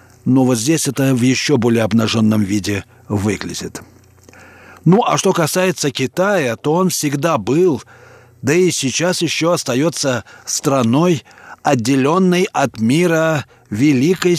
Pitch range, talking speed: 120-155 Hz, 120 wpm